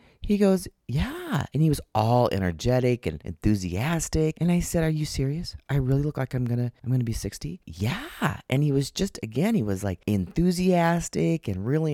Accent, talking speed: American, 195 wpm